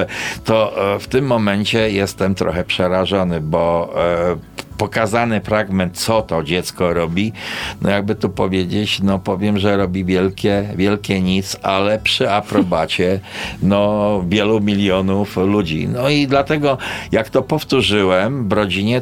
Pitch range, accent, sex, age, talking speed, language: 95-115 Hz, native, male, 50-69, 125 wpm, Polish